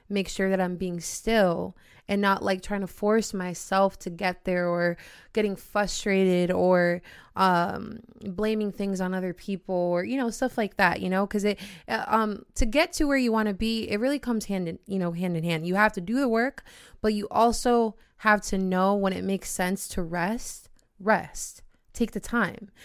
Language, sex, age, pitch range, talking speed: English, female, 20-39, 185-220 Hz, 200 wpm